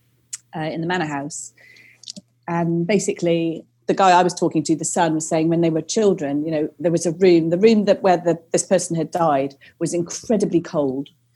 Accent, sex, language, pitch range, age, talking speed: British, female, English, 155-190 Hz, 30-49, 205 wpm